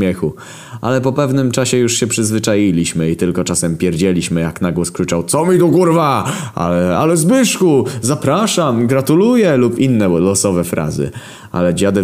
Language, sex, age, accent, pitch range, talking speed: Polish, male, 20-39, native, 85-130 Hz, 145 wpm